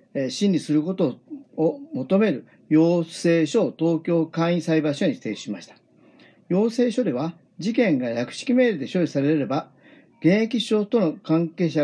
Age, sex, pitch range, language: 40-59, male, 155-215 Hz, Japanese